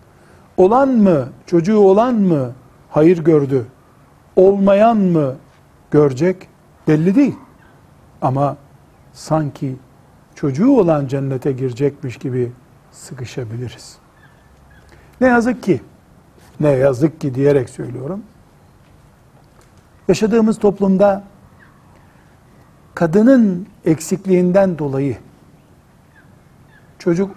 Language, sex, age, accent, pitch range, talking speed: Turkish, male, 60-79, native, 130-185 Hz, 75 wpm